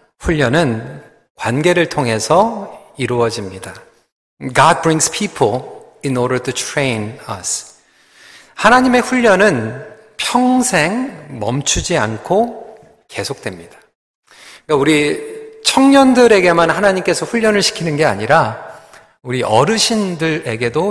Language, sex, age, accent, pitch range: Korean, male, 40-59, native, 135-220 Hz